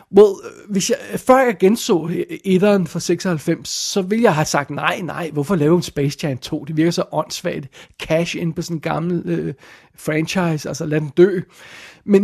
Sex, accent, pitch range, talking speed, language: male, native, 155-190 Hz, 185 wpm, Danish